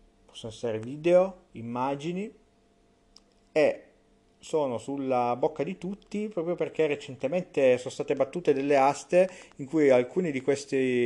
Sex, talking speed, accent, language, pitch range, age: male, 125 wpm, native, Italian, 115-165 Hz, 40-59